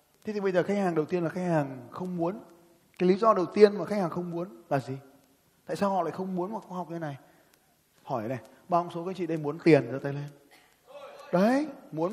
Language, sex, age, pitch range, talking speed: Vietnamese, male, 20-39, 140-190 Hz, 255 wpm